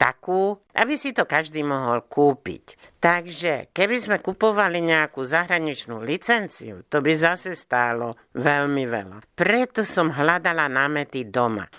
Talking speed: 125 wpm